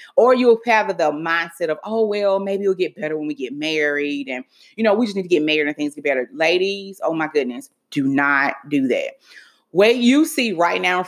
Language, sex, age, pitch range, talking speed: English, female, 30-49, 155-225 Hz, 235 wpm